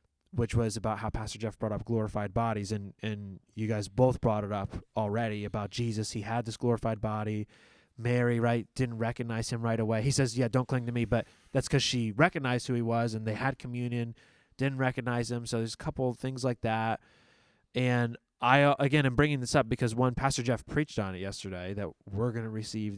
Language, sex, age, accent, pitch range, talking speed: English, male, 20-39, American, 110-125 Hz, 215 wpm